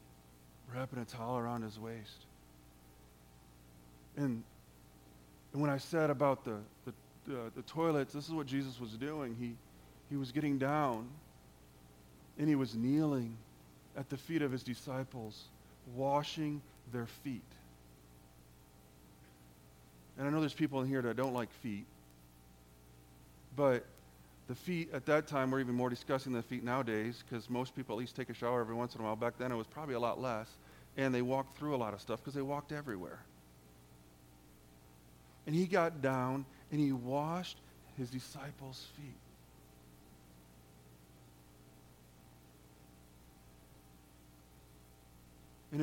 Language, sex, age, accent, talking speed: English, male, 40-59, American, 145 wpm